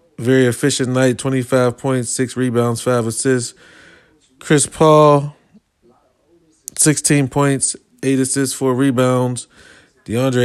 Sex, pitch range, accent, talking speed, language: male, 125-150 Hz, American, 105 wpm, English